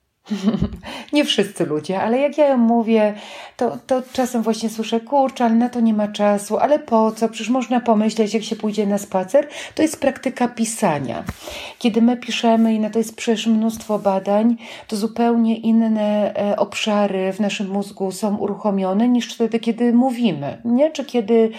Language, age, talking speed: Polish, 40-59, 170 wpm